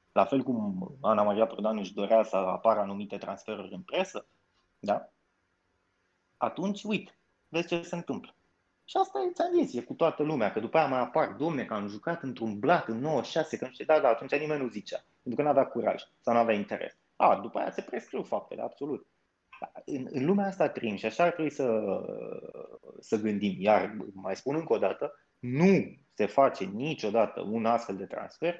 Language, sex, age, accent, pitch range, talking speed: Romanian, male, 30-49, native, 105-170 Hz, 195 wpm